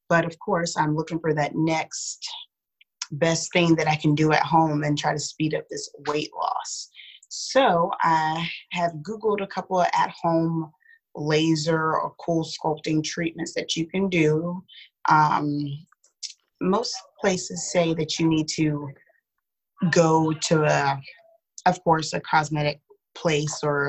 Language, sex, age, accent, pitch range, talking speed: English, female, 30-49, American, 155-185 Hz, 145 wpm